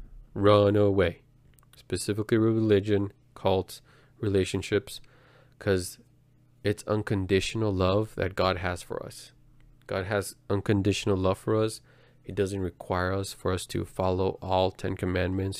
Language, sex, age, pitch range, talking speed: English, male, 20-39, 95-120 Hz, 125 wpm